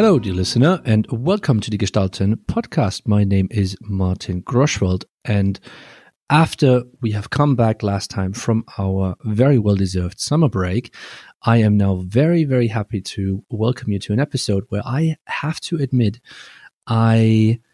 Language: English